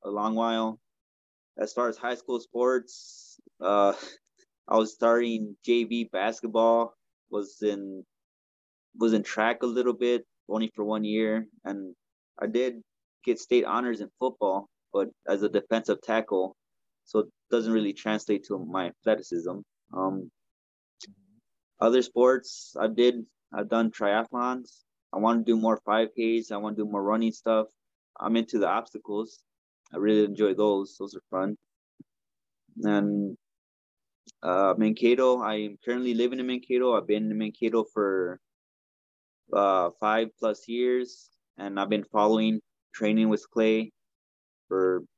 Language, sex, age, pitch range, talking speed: English, male, 20-39, 105-115 Hz, 140 wpm